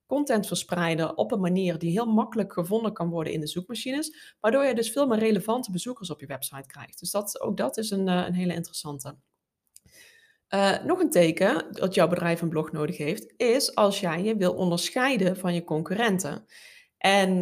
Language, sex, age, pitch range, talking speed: Dutch, female, 20-39, 175-220 Hz, 190 wpm